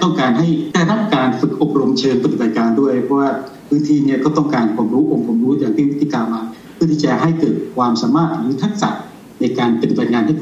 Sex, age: male, 60-79